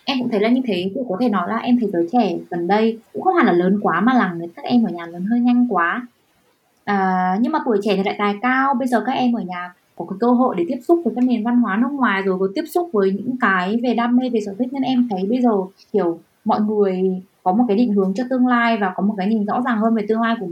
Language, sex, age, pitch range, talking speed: Vietnamese, female, 20-39, 190-245 Hz, 305 wpm